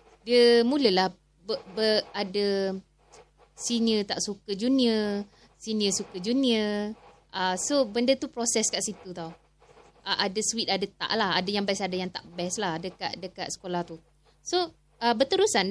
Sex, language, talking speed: female, Malay, 155 wpm